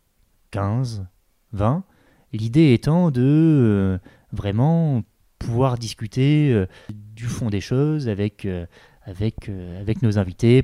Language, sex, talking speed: French, male, 95 wpm